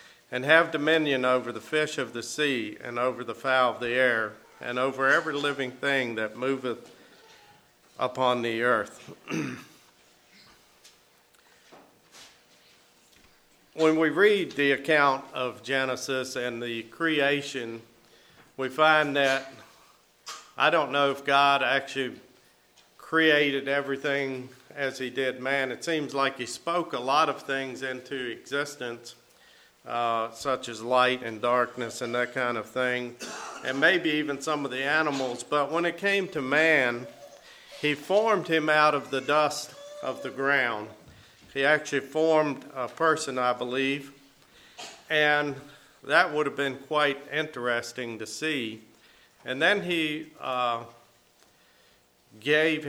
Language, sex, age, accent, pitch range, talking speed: English, male, 50-69, American, 120-145 Hz, 135 wpm